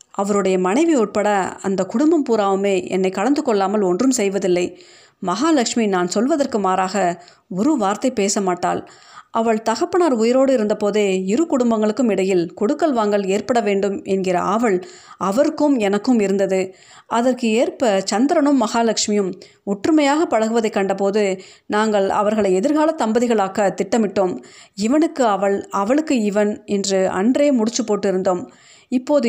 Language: Tamil